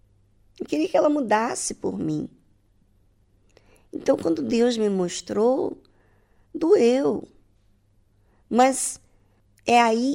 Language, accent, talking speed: Portuguese, Brazilian, 95 wpm